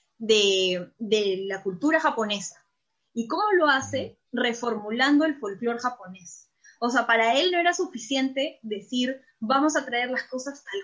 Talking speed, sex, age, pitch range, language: 150 wpm, female, 10-29, 225-270 Hz, Spanish